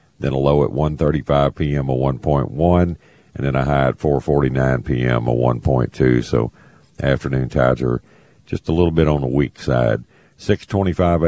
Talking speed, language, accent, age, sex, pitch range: 160 wpm, English, American, 50-69, male, 65-85 Hz